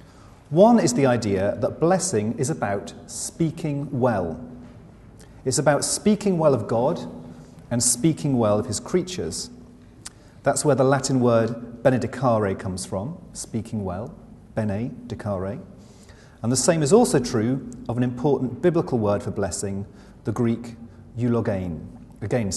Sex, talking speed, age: male, 135 wpm, 40-59